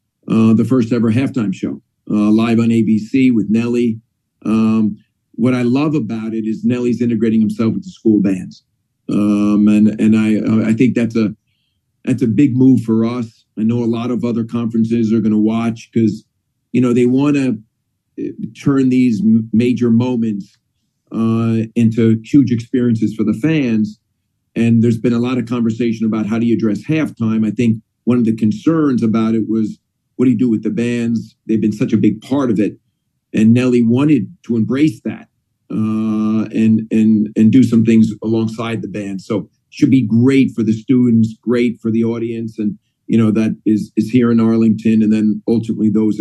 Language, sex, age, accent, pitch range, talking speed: English, male, 50-69, American, 110-120 Hz, 190 wpm